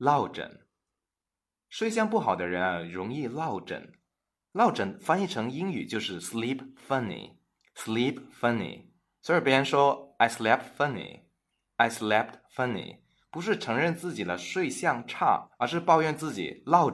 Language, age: Chinese, 20-39